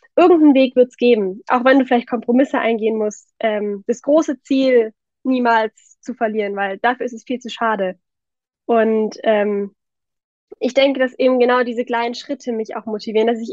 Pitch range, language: 215-260 Hz, German